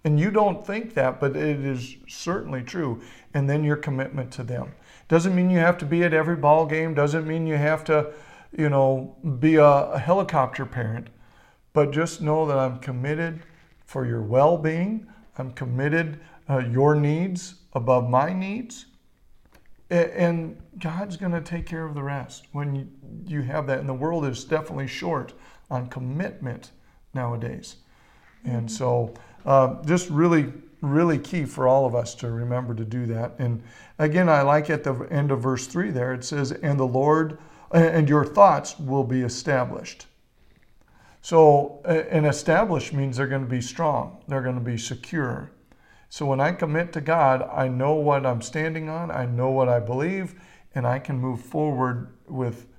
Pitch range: 130-160 Hz